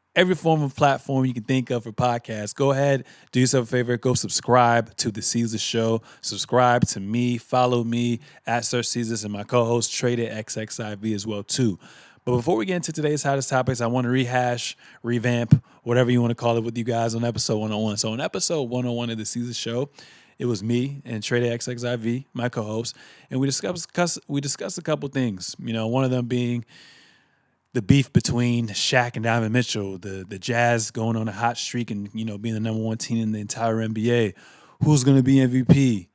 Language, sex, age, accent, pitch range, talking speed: English, male, 20-39, American, 115-135 Hz, 205 wpm